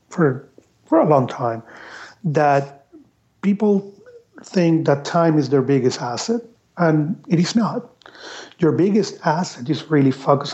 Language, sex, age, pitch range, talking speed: English, male, 40-59, 145-185 Hz, 130 wpm